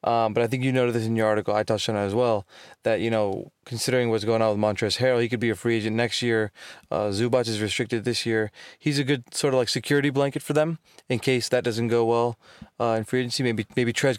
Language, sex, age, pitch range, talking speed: English, male, 20-39, 115-140 Hz, 265 wpm